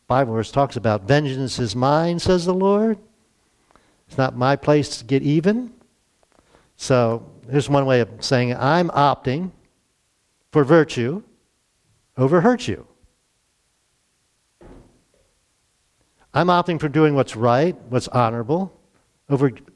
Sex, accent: male, American